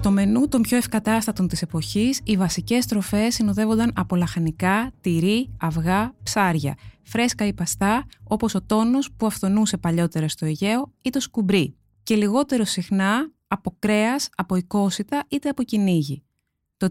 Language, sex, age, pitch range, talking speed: Greek, female, 20-39, 180-230 Hz, 145 wpm